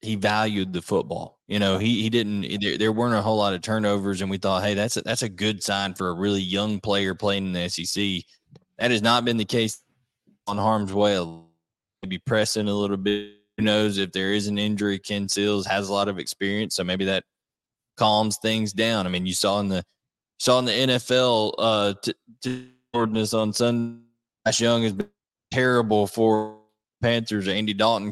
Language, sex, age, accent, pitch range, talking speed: English, male, 20-39, American, 95-110 Hz, 200 wpm